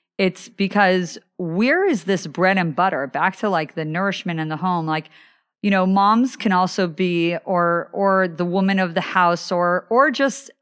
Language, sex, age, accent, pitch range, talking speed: English, female, 40-59, American, 160-200 Hz, 185 wpm